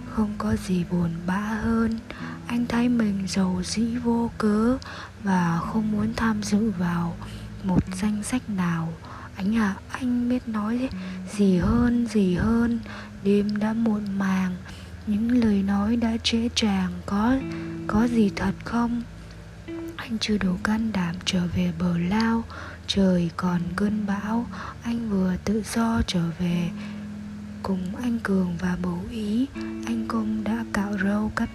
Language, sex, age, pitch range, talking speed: Vietnamese, female, 20-39, 175-225 Hz, 150 wpm